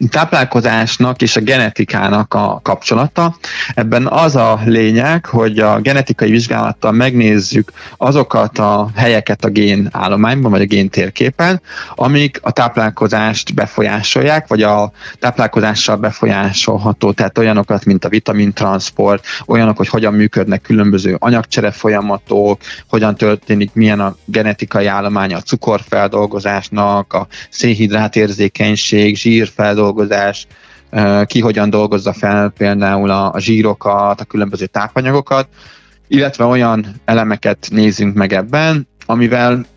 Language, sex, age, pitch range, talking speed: Hungarian, male, 20-39, 100-115 Hz, 115 wpm